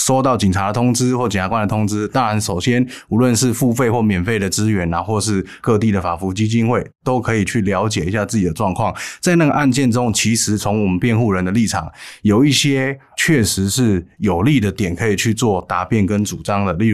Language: Chinese